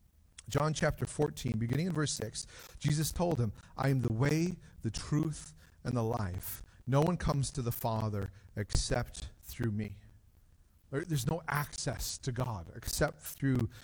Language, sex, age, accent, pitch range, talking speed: English, male, 40-59, American, 110-155 Hz, 150 wpm